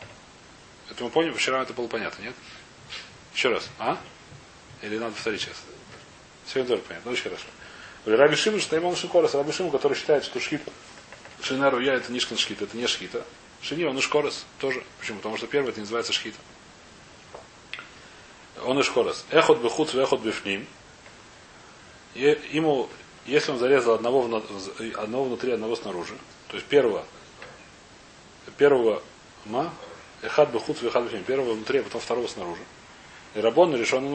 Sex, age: male, 30-49